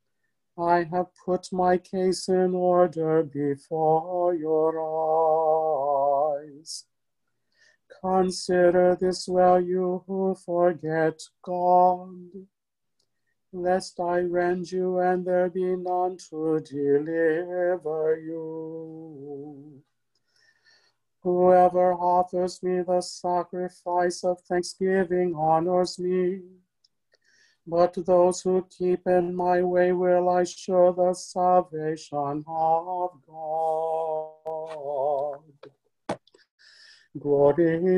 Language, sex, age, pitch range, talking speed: English, male, 50-69, 160-180 Hz, 80 wpm